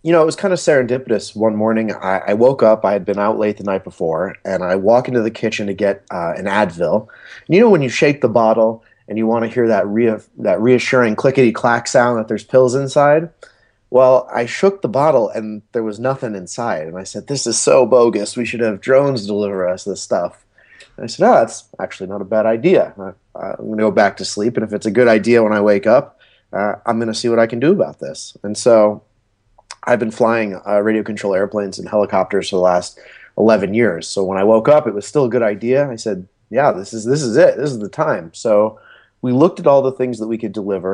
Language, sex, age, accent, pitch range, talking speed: English, male, 30-49, American, 105-125 Hz, 250 wpm